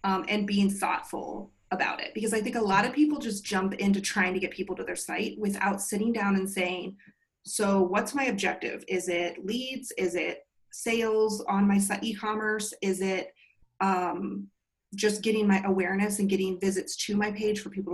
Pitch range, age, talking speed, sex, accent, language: 190-225 Hz, 30-49, 190 wpm, female, American, English